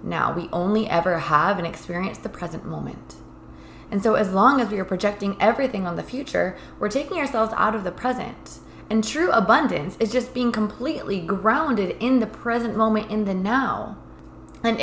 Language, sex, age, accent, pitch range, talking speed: English, female, 20-39, American, 175-225 Hz, 180 wpm